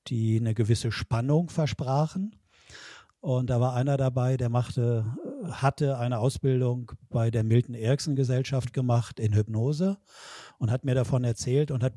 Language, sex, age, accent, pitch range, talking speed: German, male, 50-69, German, 115-135 Hz, 150 wpm